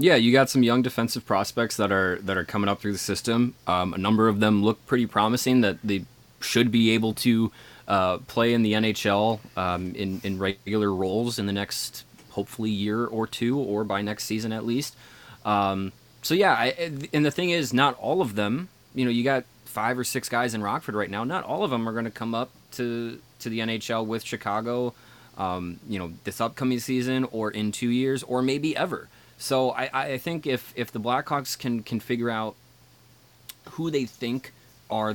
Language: English